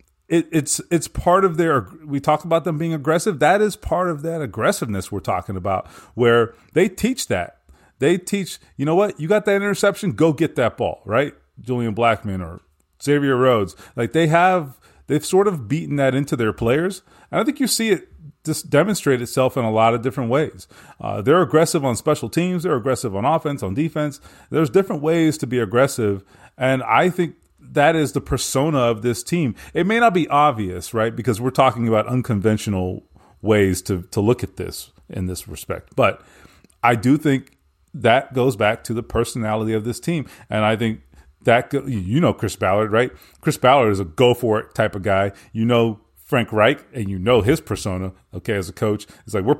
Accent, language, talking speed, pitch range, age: American, English, 200 wpm, 110-160 Hz, 30-49